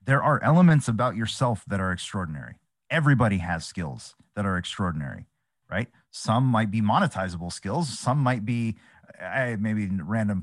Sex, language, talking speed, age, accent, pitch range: male, English, 150 wpm, 30-49, American, 95-140 Hz